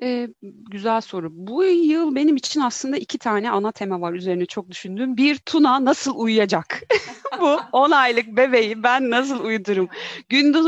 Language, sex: Turkish, female